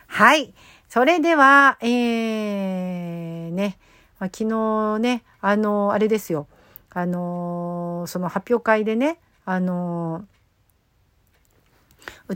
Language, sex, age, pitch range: Japanese, female, 50-69, 170-225 Hz